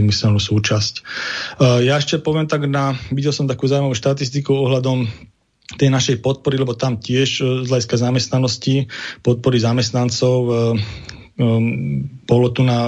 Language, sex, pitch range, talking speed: Slovak, male, 120-130 Hz, 135 wpm